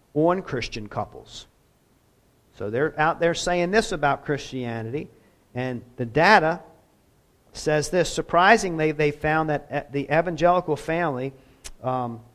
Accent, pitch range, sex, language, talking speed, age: American, 125-155 Hz, male, English, 115 wpm, 50-69